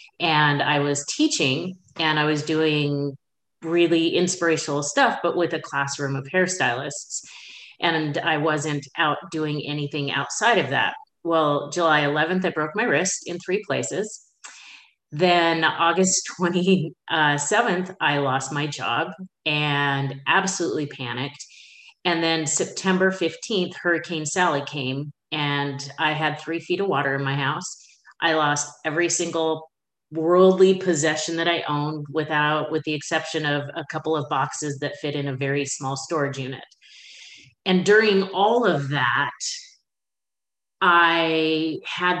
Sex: female